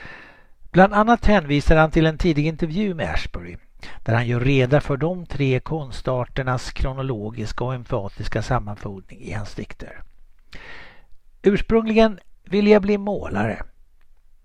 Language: Swedish